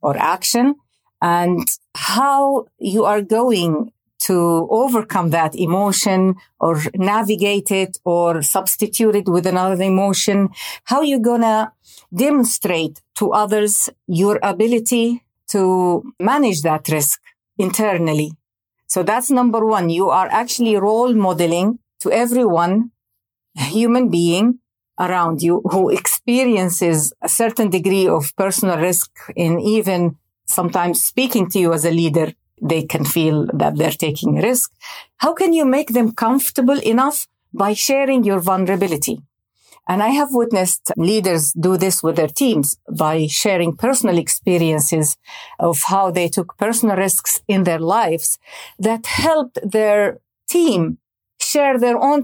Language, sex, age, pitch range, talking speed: English, female, 50-69, 170-230 Hz, 130 wpm